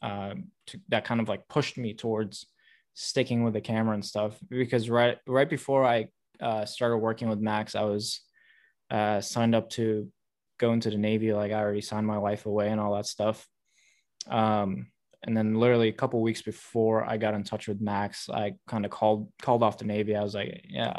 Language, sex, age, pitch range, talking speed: English, male, 20-39, 105-120 Hz, 210 wpm